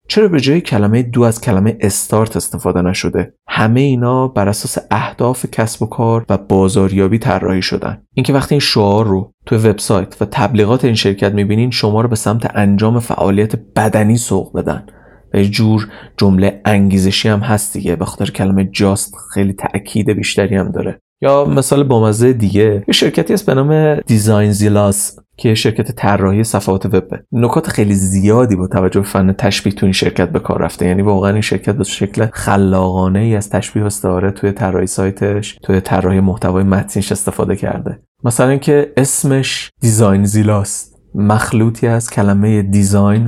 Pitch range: 95-115 Hz